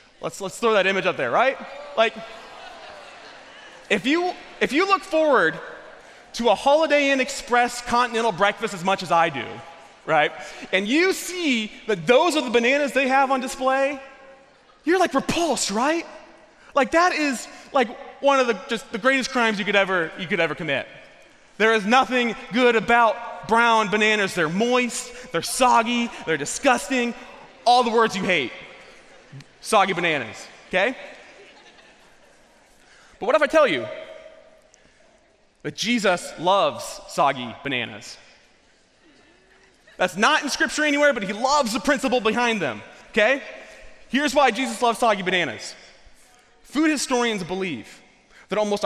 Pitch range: 210-275 Hz